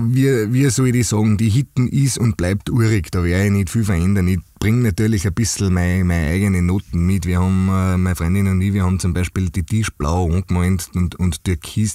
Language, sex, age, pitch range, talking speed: German, male, 30-49, 90-105 Hz, 215 wpm